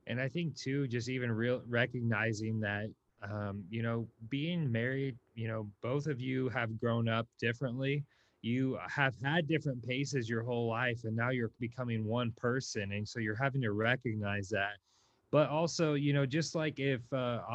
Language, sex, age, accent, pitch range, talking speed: English, male, 20-39, American, 115-140 Hz, 180 wpm